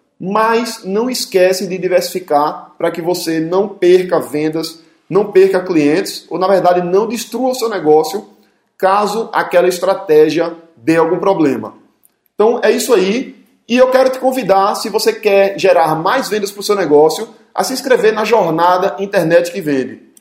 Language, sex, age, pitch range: Portuguese, male, 20-39, 170-220 Hz